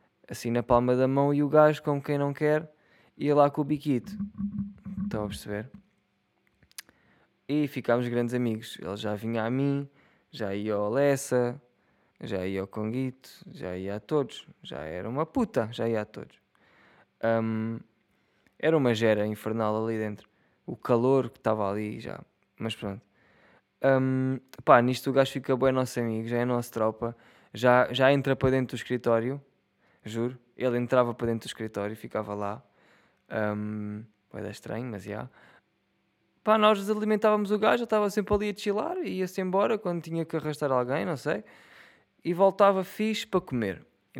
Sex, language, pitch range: male, Portuguese, 115-150 Hz